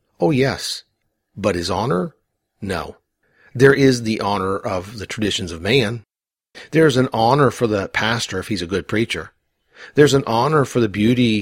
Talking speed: 170 wpm